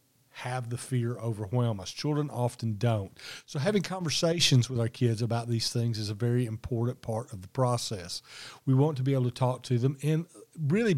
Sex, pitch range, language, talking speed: male, 120-145 Hz, English, 195 wpm